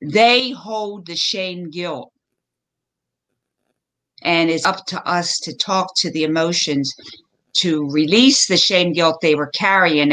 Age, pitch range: 50-69, 150-195 Hz